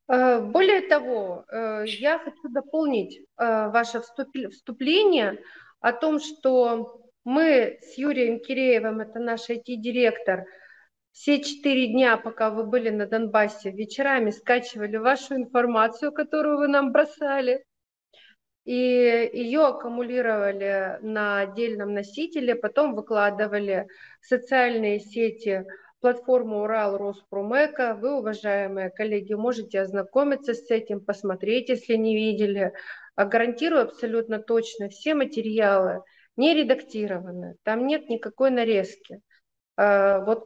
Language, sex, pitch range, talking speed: Russian, female, 210-260 Hz, 105 wpm